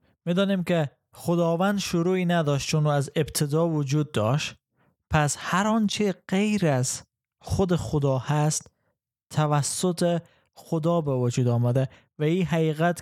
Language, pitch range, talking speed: Persian, 140-175 Hz, 125 wpm